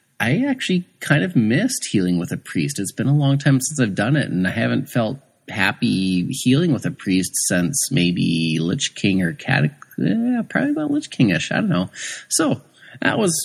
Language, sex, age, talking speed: English, male, 30-49, 195 wpm